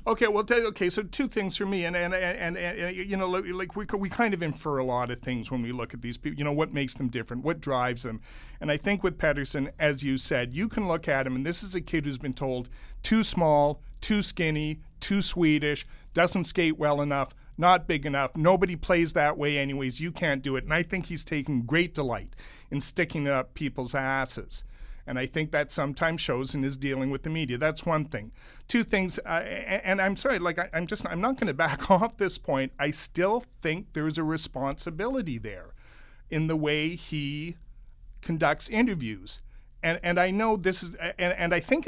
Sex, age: male, 40-59